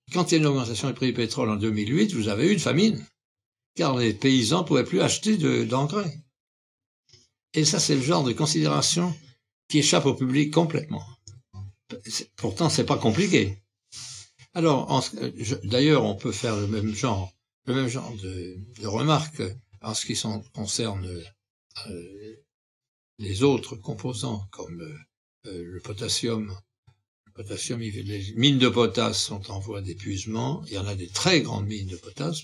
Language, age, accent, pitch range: French, 60-79, French, 105-135 Hz